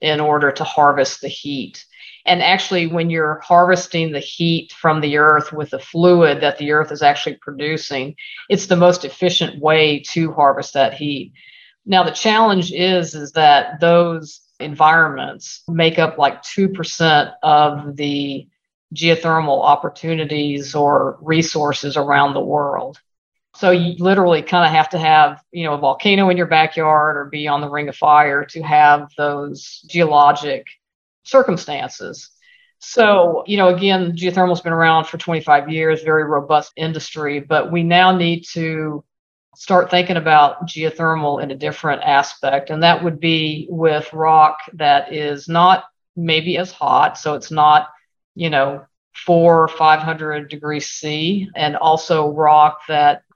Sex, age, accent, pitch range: female, 50-69, American, 150-170 Hz